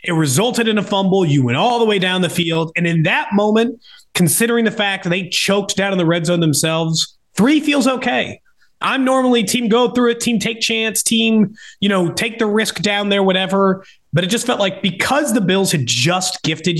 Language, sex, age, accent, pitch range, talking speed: English, male, 30-49, American, 155-230 Hz, 220 wpm